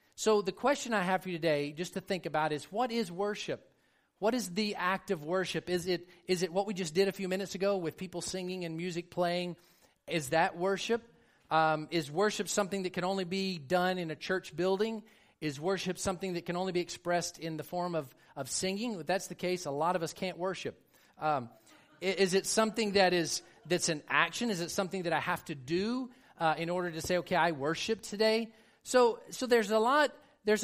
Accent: American